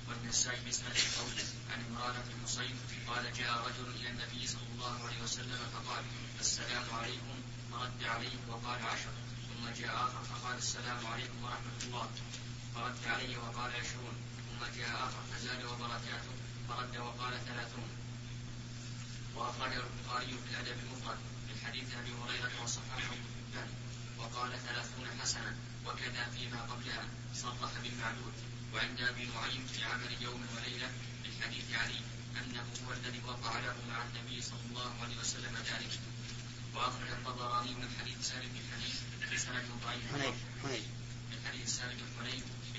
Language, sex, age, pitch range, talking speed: Arabic, male, 20-39, 120-125 Hz, 130 wpm